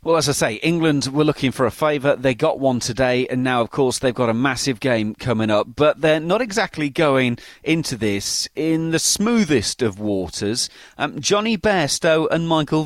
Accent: British